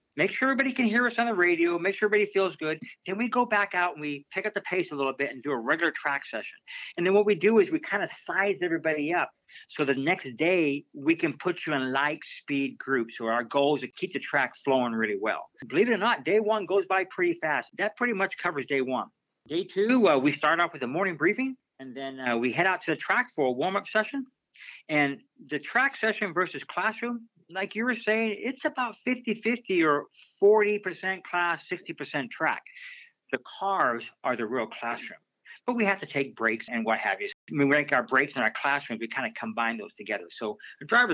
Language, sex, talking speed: English, male, 230 wpm